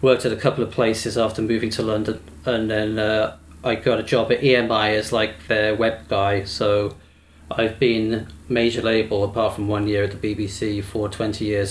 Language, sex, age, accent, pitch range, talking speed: English, male, 40-59, British, 100-120 Hz, 200 wpm